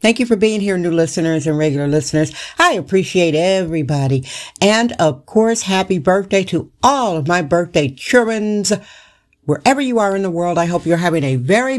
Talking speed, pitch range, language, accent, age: 185 wpm, 160-215 Hz, English, American, 60-79